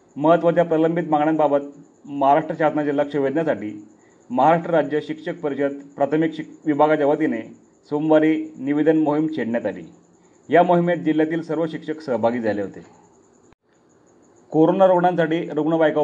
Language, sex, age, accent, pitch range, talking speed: Marathi, male, 40-59, native, 145-170 Hz, 115 wpm